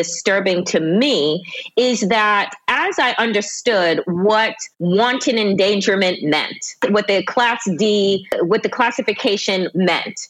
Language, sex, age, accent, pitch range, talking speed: English, female, 30-49, American, 195-250 Hz, 115 wpm